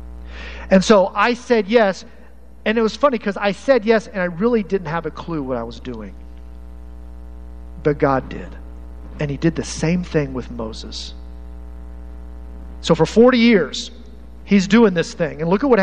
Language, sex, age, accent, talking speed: English, male, 50-69, American, 180 wpm